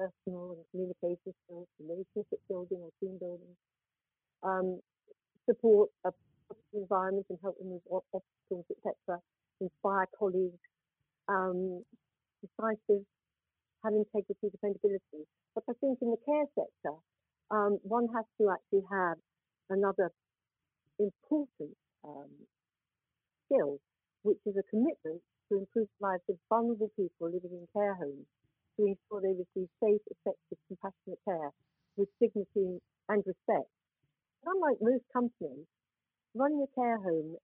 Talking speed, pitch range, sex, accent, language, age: 125 wpm, 175-210 Hz, female, British, English, 50-69